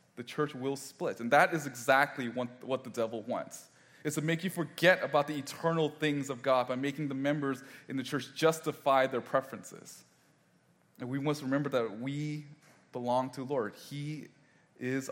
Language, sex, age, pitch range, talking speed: English, male, 20-39, 120-145 Hz, 180 wpm